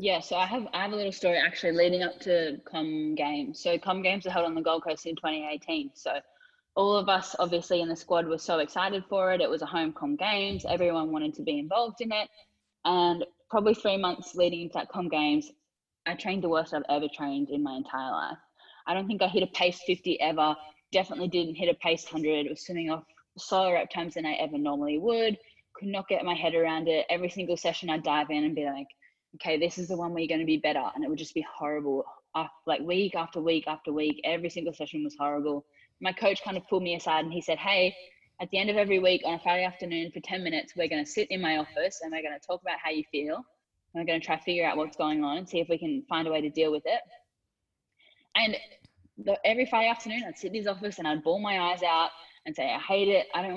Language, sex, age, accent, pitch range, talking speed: English, female, 10-29, Australian, 155-190 Hz, 260 wpm